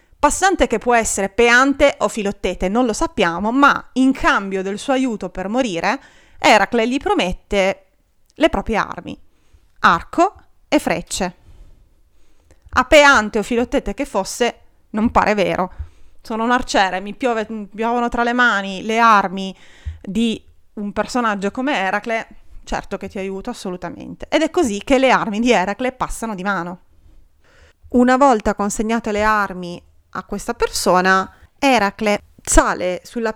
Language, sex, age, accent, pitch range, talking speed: Italian, female, 30-49, native, 185-235 Hz, 140 wpm